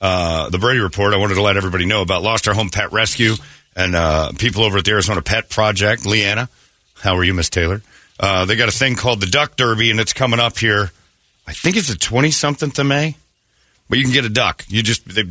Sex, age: male, 40-59